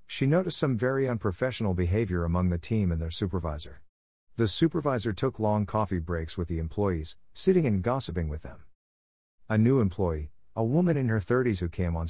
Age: 50-69